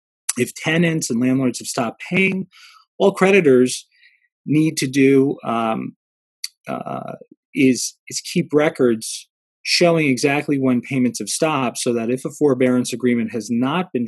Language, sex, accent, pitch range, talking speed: English, male, American, 115-150 Hz, 140 wpm